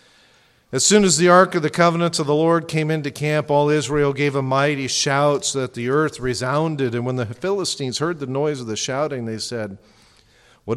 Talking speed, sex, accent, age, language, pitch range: 210 wpm, male, American, 50-69, English, 125-175 Hz